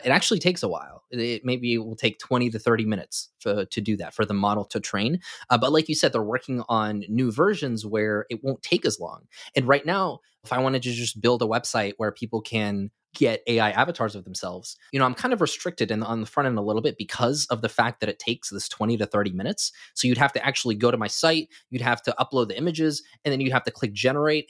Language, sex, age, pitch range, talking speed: English, male, 20-39, 110-135 Hz, 255 wpm